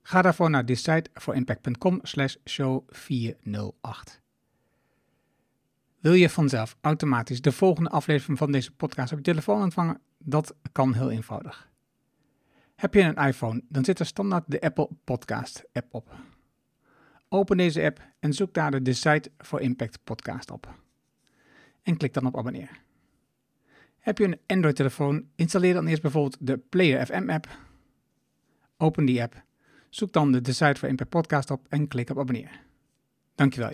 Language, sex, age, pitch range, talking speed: Dutch, male, 60-79, 130-170 Hz, 150 wpm